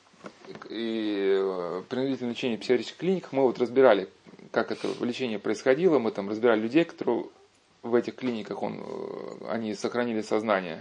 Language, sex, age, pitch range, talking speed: Russian, male, 20-39, 115-155 Hz, 140 wpm